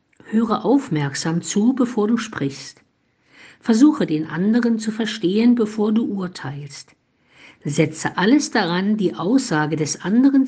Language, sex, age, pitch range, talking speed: German, female, 50-69, 160-225 Hz, 120 wpm